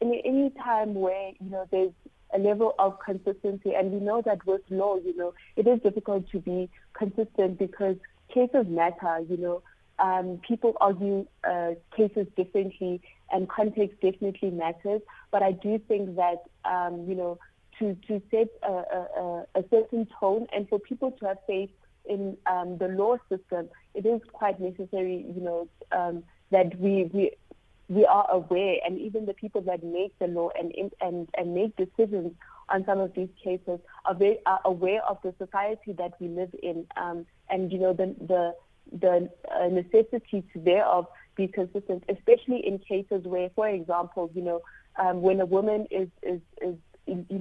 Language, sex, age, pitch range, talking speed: English, female, 30-49, 180-205 Hz, 170 wpm